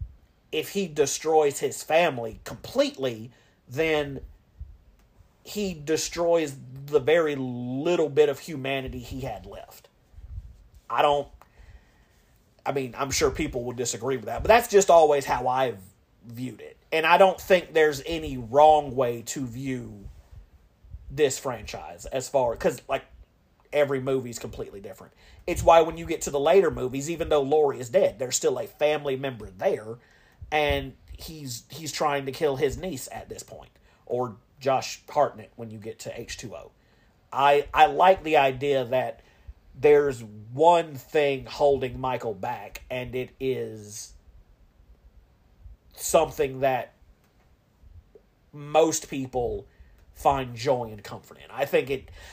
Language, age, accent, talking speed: English, 40-59, American, 145 wpm